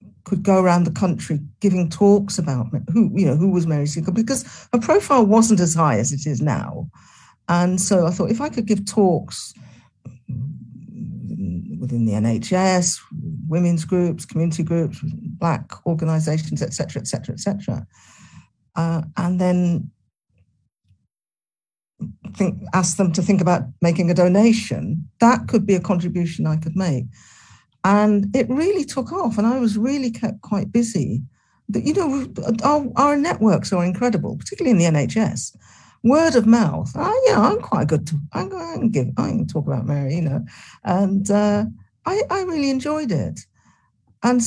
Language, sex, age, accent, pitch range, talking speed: English, female, 50-69, British, 155-225 Hz, 160 wpm